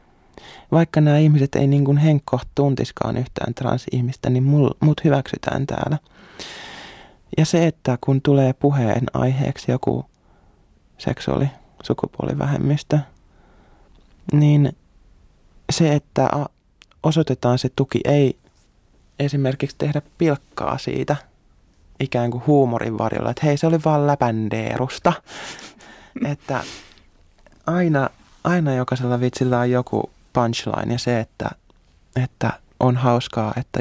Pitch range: 120-145 Hz